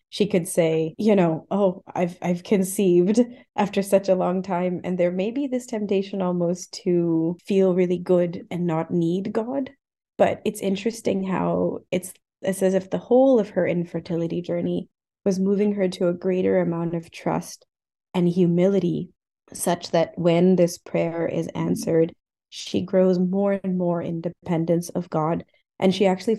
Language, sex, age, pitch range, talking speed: English, female, 20-39, 170-195 Hz, 165 wpm